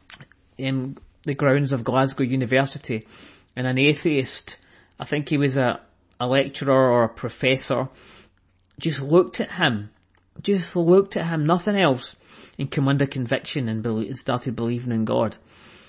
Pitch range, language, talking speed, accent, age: 125-150 Hz, English, 145 wpm, British, 40-59